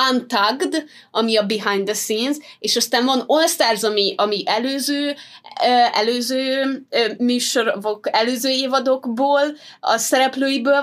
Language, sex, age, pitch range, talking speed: Hungarian, female, 20-39, 210-275 Hz, 120 wpm